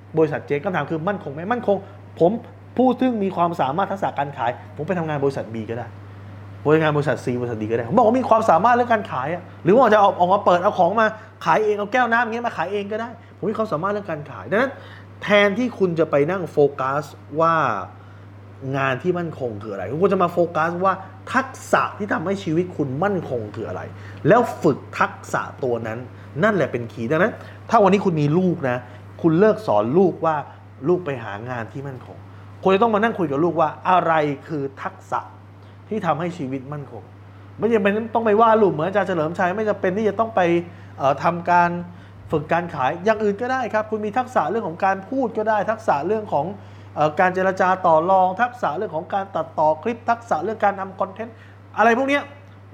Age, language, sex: 20-39, Thai, male